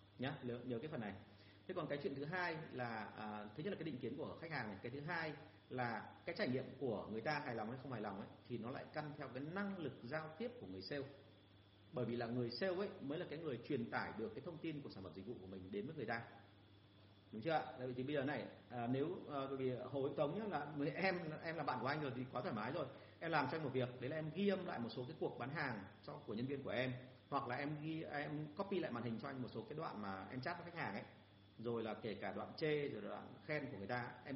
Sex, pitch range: male, 115-155 Hz